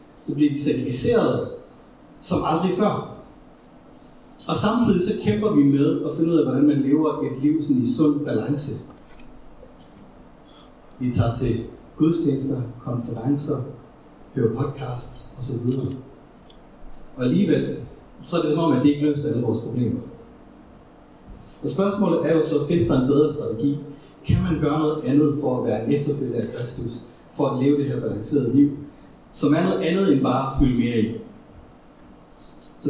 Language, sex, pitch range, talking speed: Danish, male, 125-150 Hz, 155 wpm